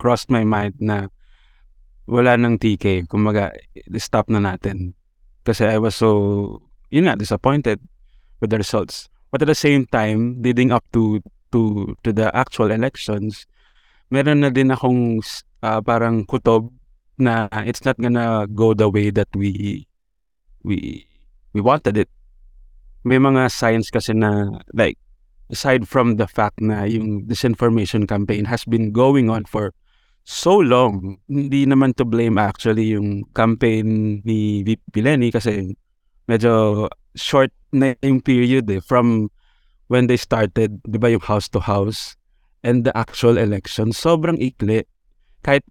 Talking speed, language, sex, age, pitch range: 140 wpm, English, male, 20-39, 105-125 Hz